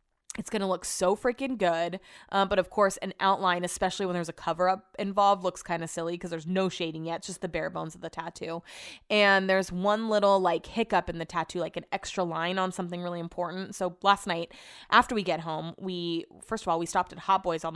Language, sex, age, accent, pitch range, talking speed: English, female, 20-39, American, 175-230 Hz, 240 wpm